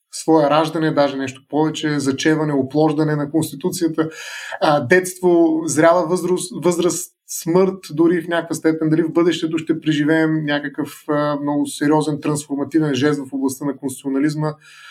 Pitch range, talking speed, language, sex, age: 150-185 Hz, 130 wpm, Bulgarian, male, 30-49